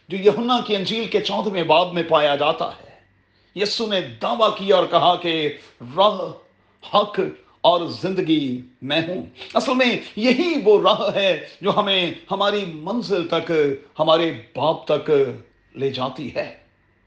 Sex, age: male, 40-59